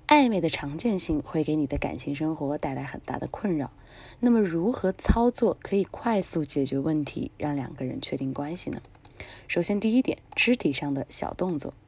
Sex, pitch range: female, 145-205 Hz